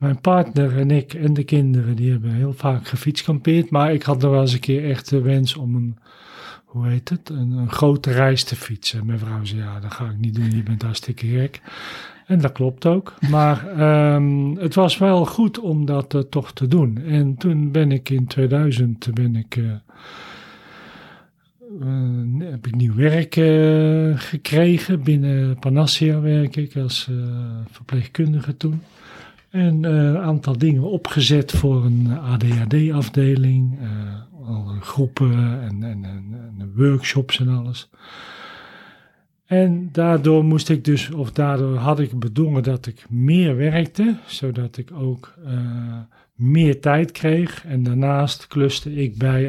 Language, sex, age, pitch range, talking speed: Dutch, male, 40-59, 125-155 Hz, 155 wpm